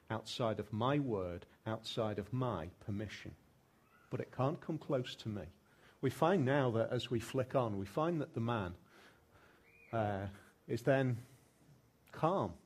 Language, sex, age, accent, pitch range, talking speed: English, male, 40-59, British, 105-140 Hz, 150 wpm